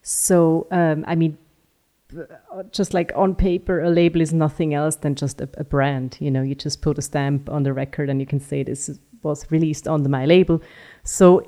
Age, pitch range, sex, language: 30-49, 145-170 Hz, female, English